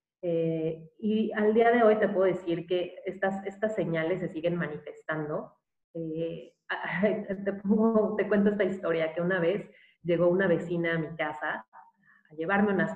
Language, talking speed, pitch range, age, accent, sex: Spanish, 160 wpm, 175-210 Hz, 30-49, Mexican, female